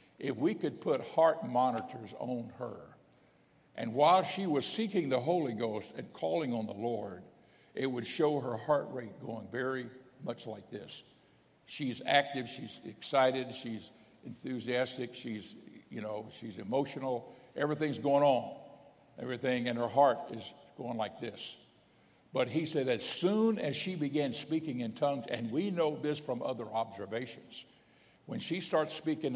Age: 60-79